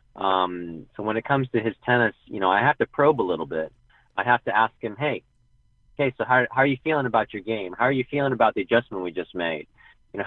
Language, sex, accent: English, male, American